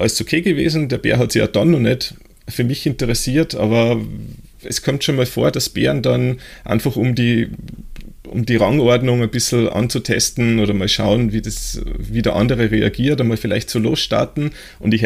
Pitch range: 110-130 Hz